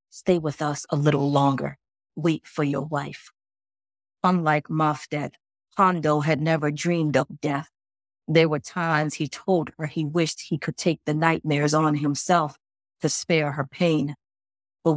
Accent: American